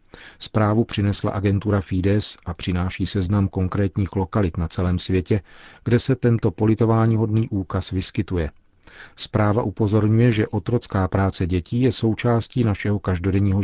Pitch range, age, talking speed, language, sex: 95-110 Hz, 40-59, 125 wpm, Czech, male